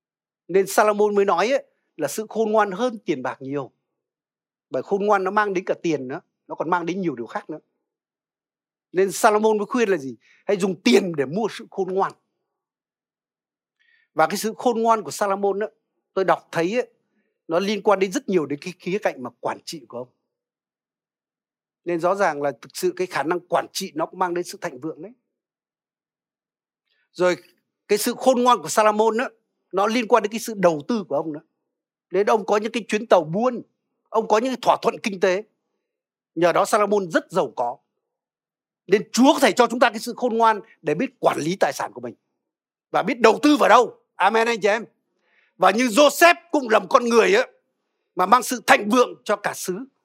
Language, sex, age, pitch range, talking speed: Vietnamese, male, 60-79, 185-240 Hz, 210 wpm